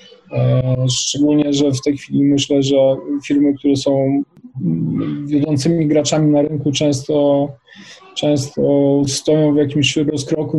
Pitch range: 145-165 Hz